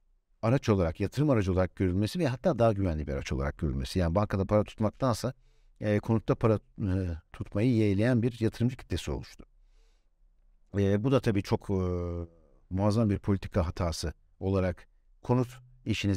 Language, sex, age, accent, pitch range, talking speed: Turkish, male, 60-79, native, 95-115 Hz, 150 wpm